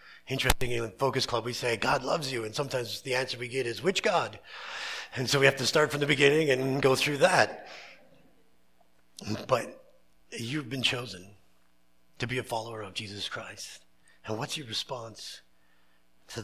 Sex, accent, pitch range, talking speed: male, American, 95-140 Hz, 170 wpm